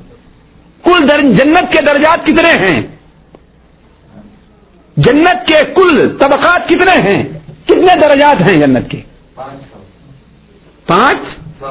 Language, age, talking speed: Urdu, 50-69, 90 wpm